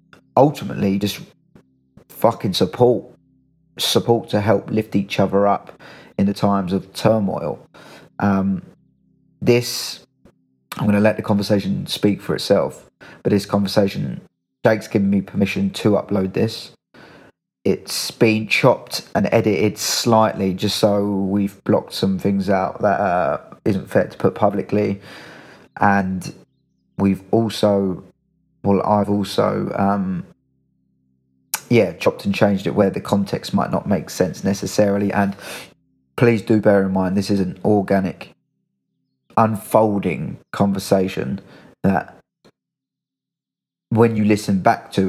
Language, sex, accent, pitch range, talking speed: English, male, British, 95-105 Hz, 125 wpm